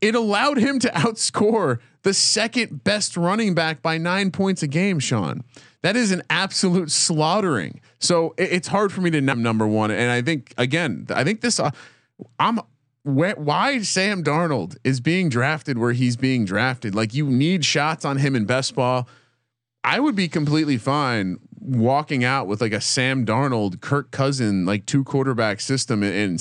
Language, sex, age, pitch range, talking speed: English, male, 30-49, 110-160 Hz, 175 wpm